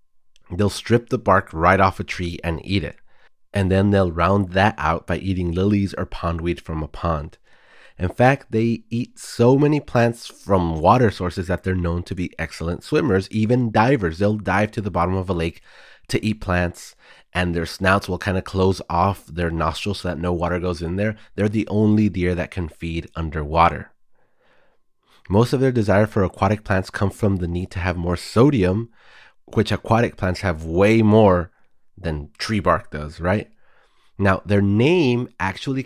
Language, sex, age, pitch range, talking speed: English, male, 30-49, 85-105 Hz, 185 wpm